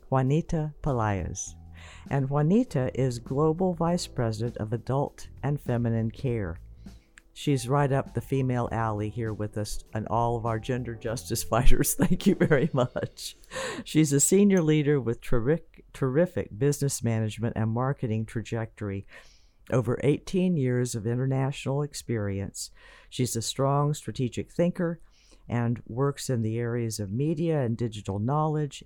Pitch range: 110-145 Hz